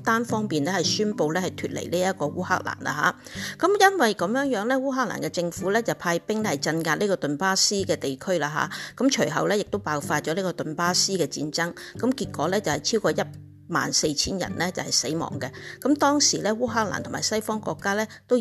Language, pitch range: Chinese, 160-220 Hz